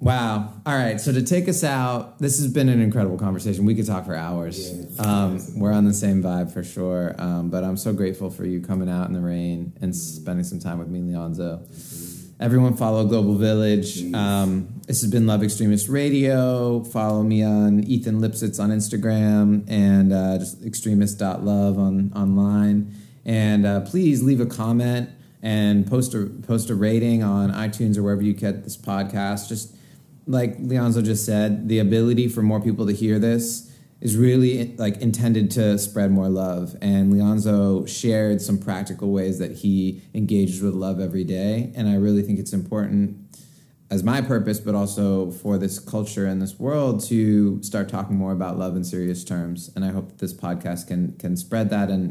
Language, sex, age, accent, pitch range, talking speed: English, male, 30-49, American, 95-115 Hz, 185 wpm